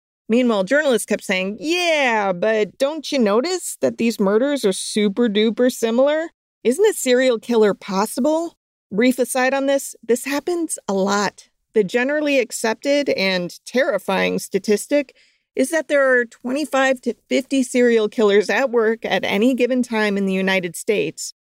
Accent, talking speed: American, 150 wpm